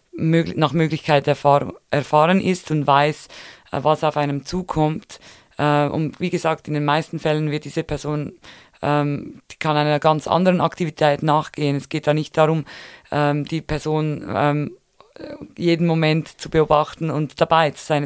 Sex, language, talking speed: female, German, 140 wpm